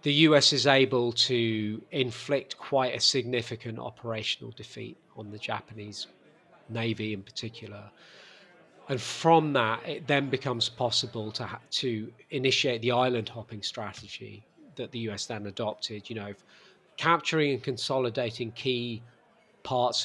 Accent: British